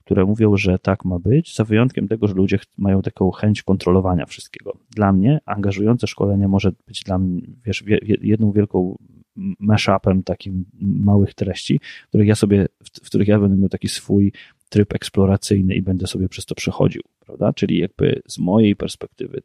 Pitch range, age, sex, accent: 95-110 Hz, 30-49, male, native